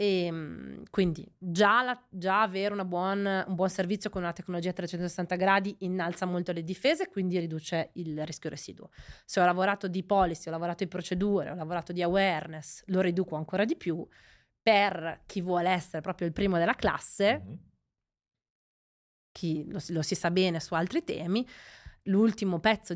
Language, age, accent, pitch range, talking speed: Italian, 20-39, native, 165-195 Hz, 160 wpm